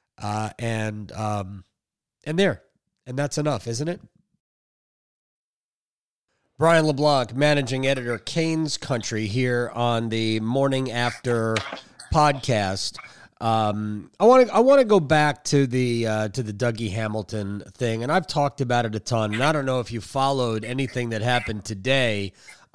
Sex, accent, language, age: male, American, English, 30-49